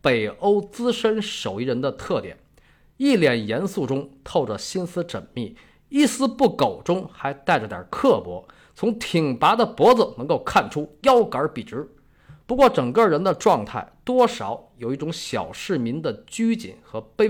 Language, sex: Chinese, male